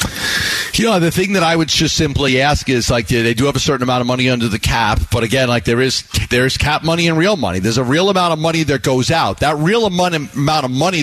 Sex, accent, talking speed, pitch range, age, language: male, American, 275 wpm, 130-165 Hz, 40-59, English